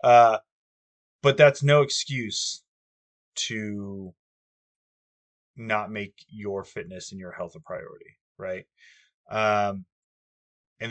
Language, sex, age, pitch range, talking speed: English, male, 20-39, 95-115 Hz, 100 wpm